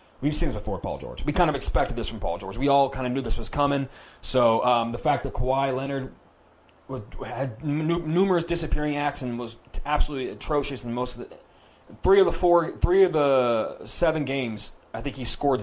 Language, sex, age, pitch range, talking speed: English, male, 30-49, 120-150 Hz, 195 wpm